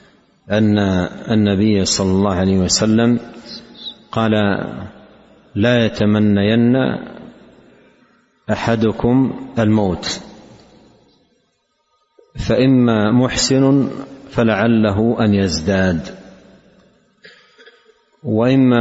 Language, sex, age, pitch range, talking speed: Arabic, male, 50-69, 100-115 Hz, 55 wpm